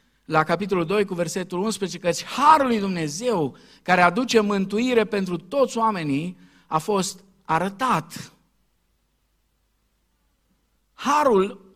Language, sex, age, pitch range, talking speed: Romanian, male, 50-69, 130-195 Hz, 100 wpm